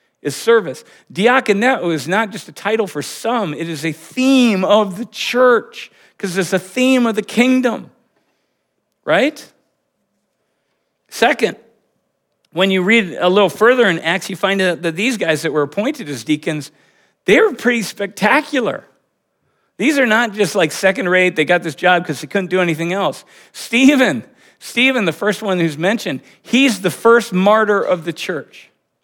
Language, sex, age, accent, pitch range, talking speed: English, male, 50-69, American, 160-215 Hz, 165 wpm